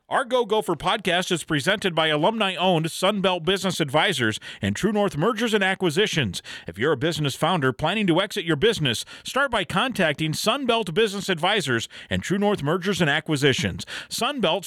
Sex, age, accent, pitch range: male, 50-69, American, 140-200 Hz